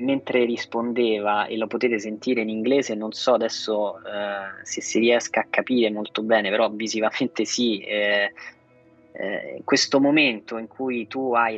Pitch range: 105-125 Hz